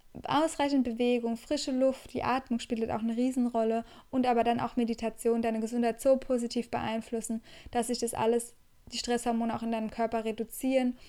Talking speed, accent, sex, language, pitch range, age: 170 wpm, German, female, German, 220-245 Hz, 10-29